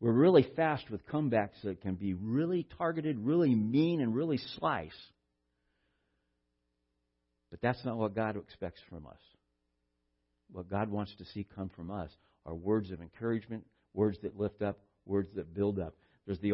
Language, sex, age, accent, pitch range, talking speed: English, male, 60-79, American, 100-135 Hz, 165 wpm